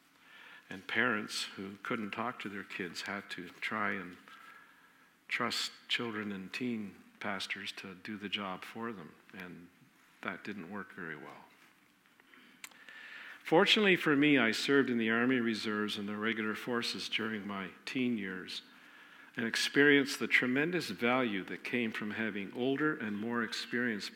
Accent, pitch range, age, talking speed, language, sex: American, 105-120 Hz, 50-69, 145 wpm, English, male